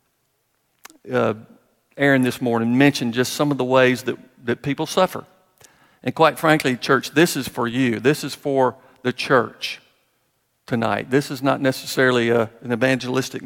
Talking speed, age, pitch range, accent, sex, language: 150 wpm, 50-69, 125-145 Hz, American, male, English